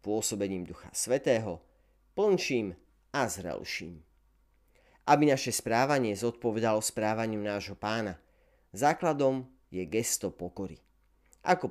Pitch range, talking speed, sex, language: 90-130 Hz, 90 wpm, male, Slovak